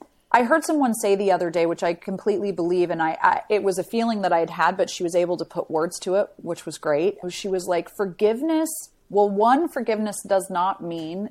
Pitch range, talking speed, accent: 165-205 Hz, 235 wpm, American